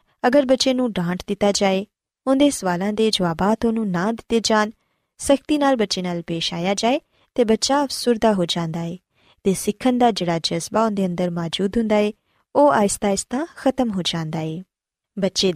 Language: Punjabi